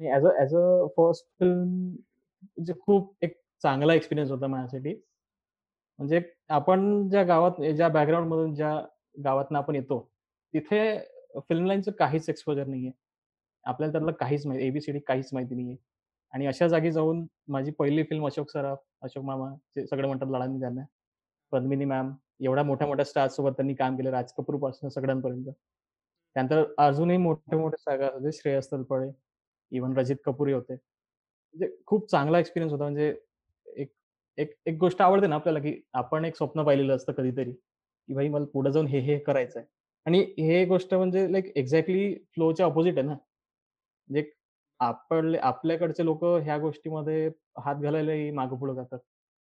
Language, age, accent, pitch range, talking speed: Marathi, 20-39, native, 135-165 Hz, 150 wpm